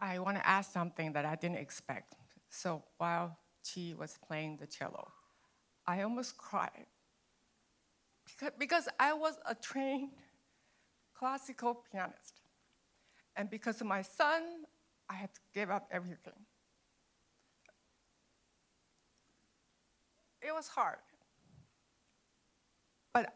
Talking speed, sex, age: 105 wpm, female, 60-79